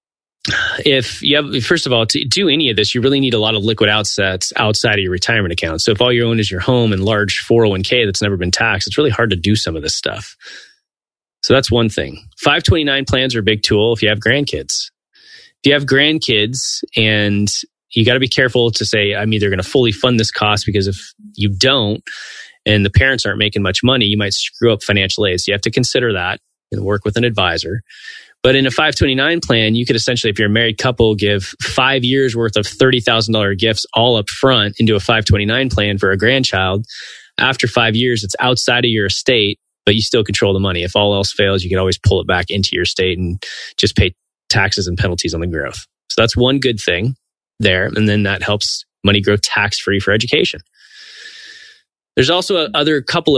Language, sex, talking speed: English, male, 220 wpm